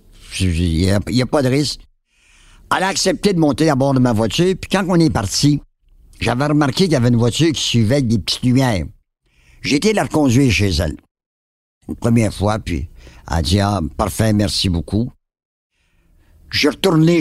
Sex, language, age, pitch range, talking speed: male, French, 60-79, 90-130 Hz, 190 wpm